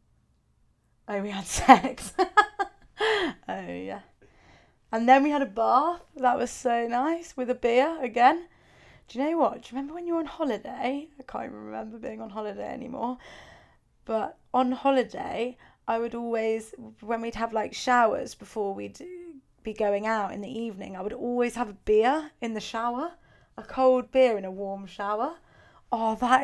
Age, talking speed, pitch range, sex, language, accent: 20-39, 170 wpm, 200-260 Hz, female, English, British